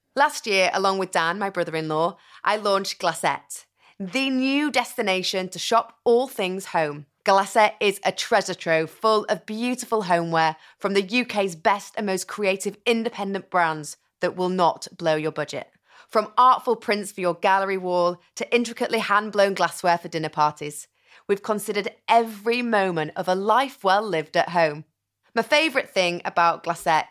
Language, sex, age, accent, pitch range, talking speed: English, female, 30-49, British, 170-230 Hz, 165 wpm